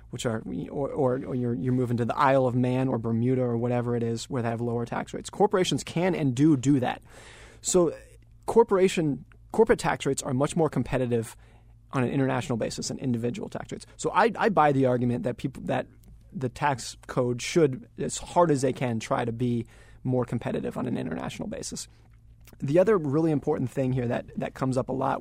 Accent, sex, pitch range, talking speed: American, male, 120-150 Hz, 205 wpm